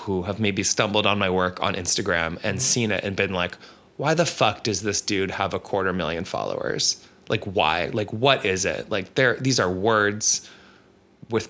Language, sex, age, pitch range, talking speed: English, male, 20-39, 95-115 Hz, 200 wpm